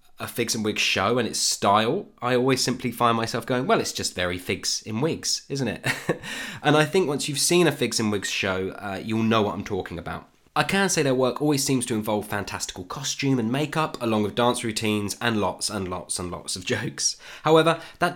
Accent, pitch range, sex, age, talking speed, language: British, 105-140 Hz, male, 20-39, 225 wpm, English